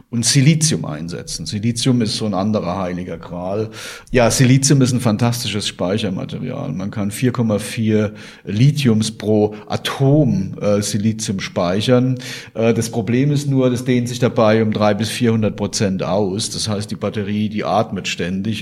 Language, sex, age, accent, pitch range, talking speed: German, male, 40-59, German, 105-125 Hz, 150 wpm